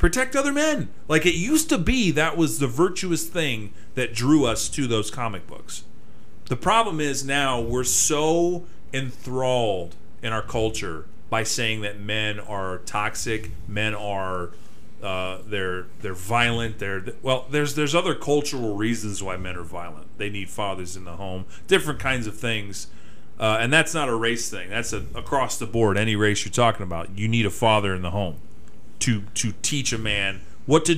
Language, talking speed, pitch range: English, 180 wpm, 105-155 Hz